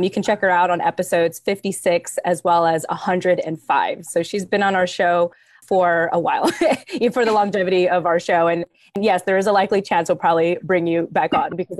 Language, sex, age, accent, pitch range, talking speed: English, female, 20-39, American, 170-195 Hz, 210 wpm